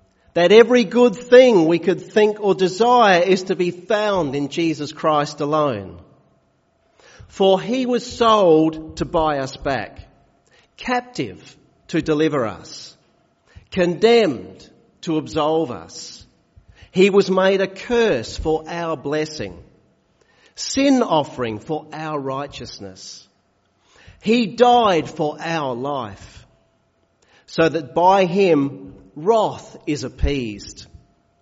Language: English